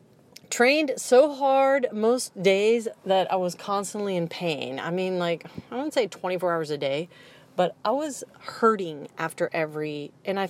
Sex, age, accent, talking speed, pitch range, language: female, 30-49, American, 165 wpm, 175-240 Hz, English